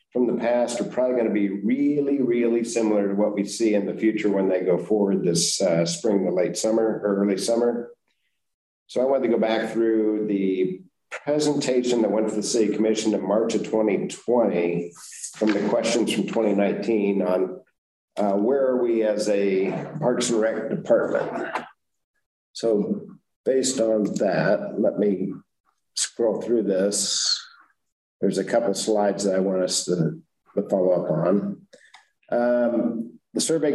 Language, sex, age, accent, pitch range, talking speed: English, male, 50-69, American, 100-120 Hz, 160 wpm